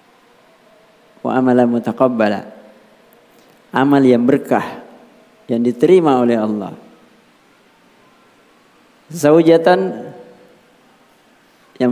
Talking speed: 55 wpm